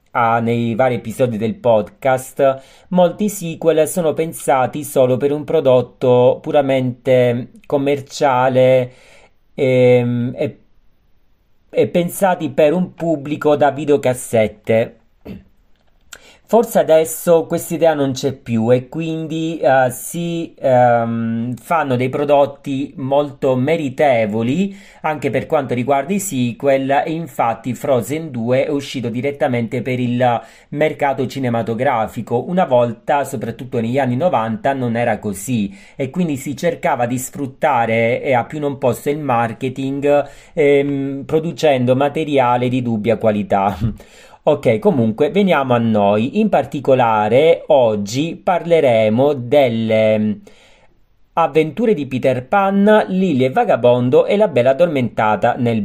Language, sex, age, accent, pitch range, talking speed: Italian, male, 40-59, native, 120-155 Hz, 115 wpm